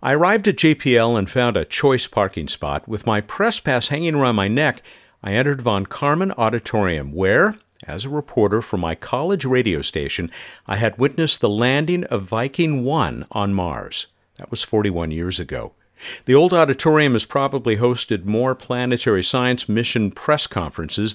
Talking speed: 165 wpm